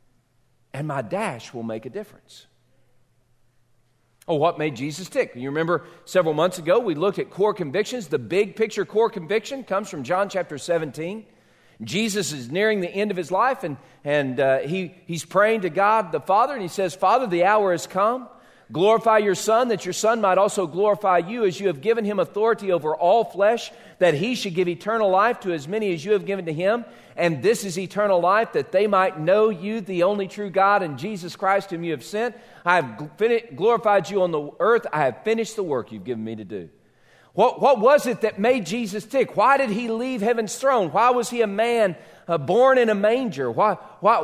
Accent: American